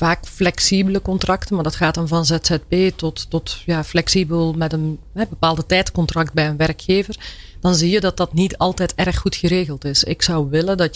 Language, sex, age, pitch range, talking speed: Dutch, female, 40-59, 155-185 Hz, 195 wpm